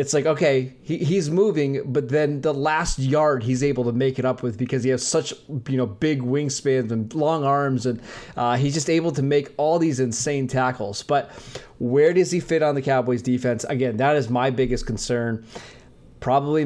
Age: 20-39